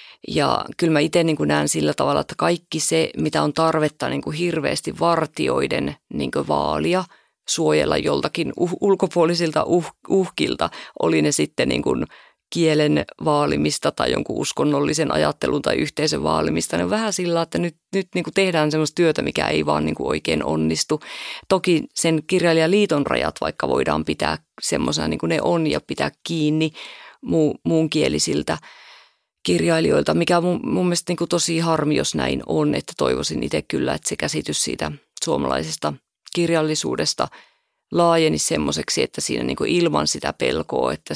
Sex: female